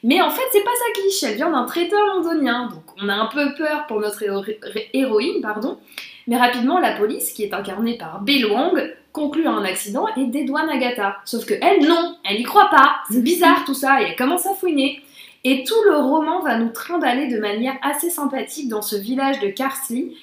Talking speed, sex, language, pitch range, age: 215 wpm, female, French, 210-305 Hz, 20-39